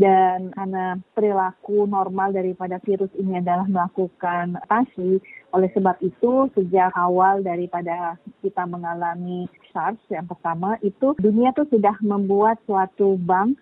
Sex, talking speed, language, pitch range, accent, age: female, 125 wpm, Indonesian, 185-210 Hz, native, 30-49